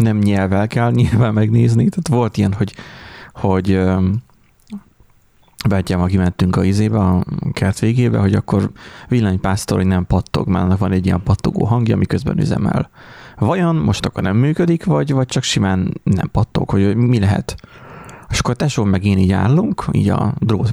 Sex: male